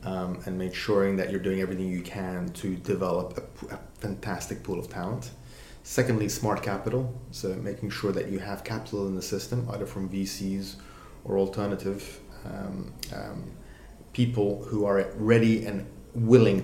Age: 30-49